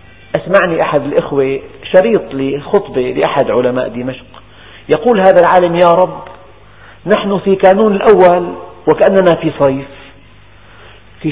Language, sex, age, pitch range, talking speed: Arabic, male, 50-69, 115-175 Hz, 110 wpm